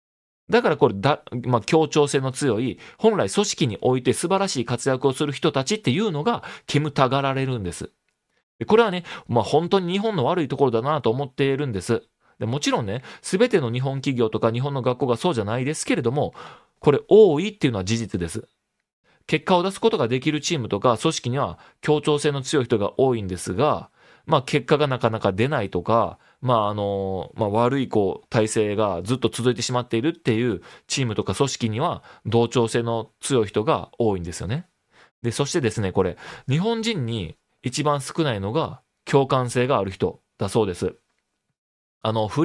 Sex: male